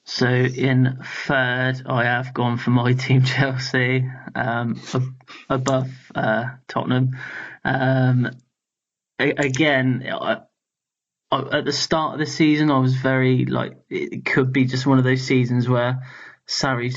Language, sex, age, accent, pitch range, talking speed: English, male, 20-39, British, 120-130 Hz, 135 wpm